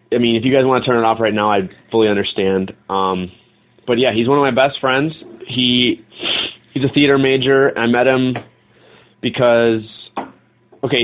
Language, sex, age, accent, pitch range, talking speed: English, male, 20-39, American, 115-140 Hz, 190 wpm